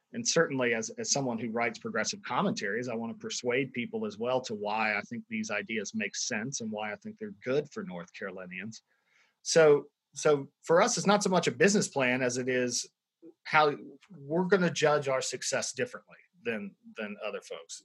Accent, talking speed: American, 200 wpm